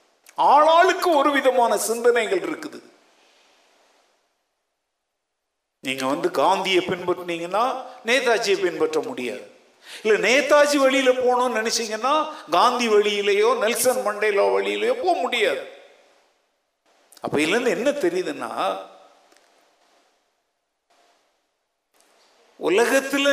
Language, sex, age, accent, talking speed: Tamil, male, 50-69, native, 35 wpm